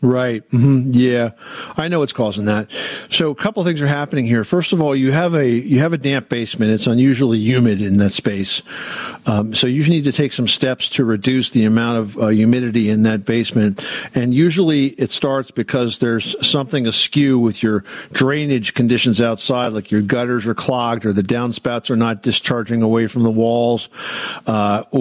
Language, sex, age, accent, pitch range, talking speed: English, male, 50-69, American, 115-145 Hz, 190 wpm